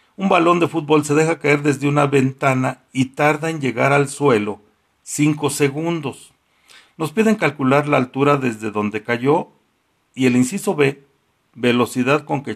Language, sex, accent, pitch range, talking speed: Spanish, male, Mexican, 125-155 Hz, 160 wpm